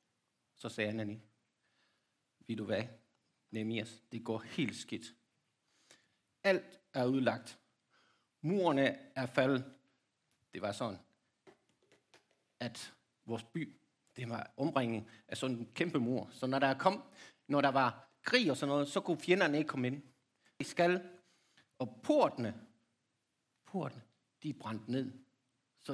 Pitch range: 125-180 Hz